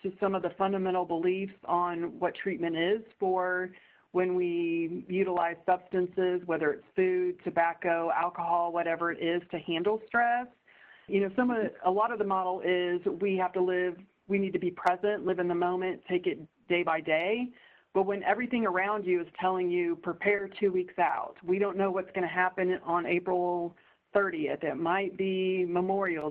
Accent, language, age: American, English, 40-59